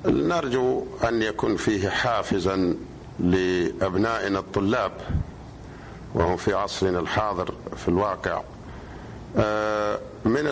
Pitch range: 100-115 Hz